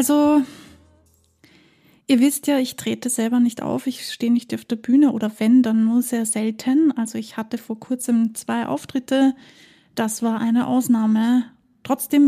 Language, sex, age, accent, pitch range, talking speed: German, female, 20-39, German, 230-270 Hz, 160 wpm